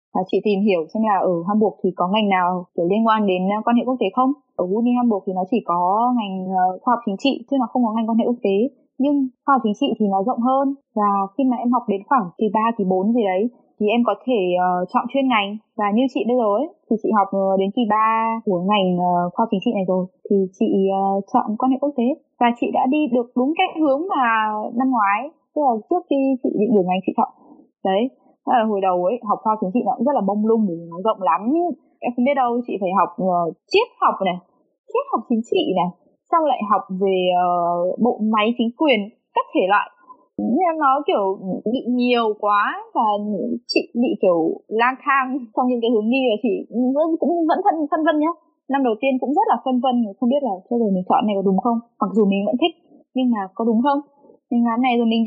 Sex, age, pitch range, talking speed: female, 20-39, 200-270 Hz, 240 wpm